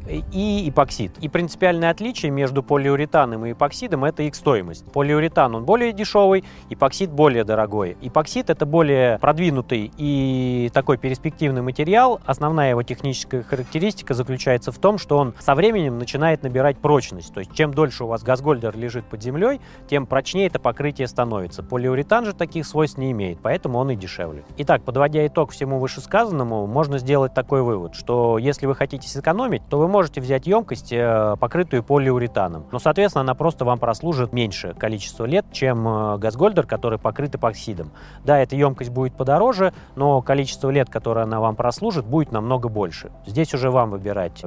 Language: Russian